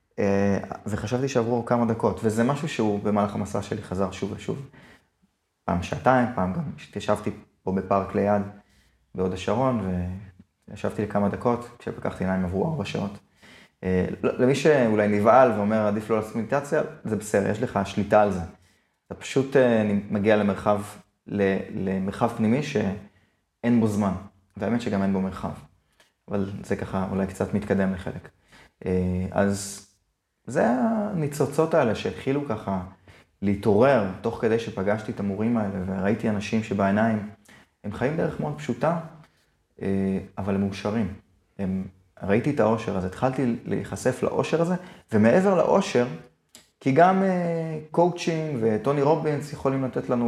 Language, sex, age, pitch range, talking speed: Hebrew, male, 20-39, 100-125 Hz, 120 wpm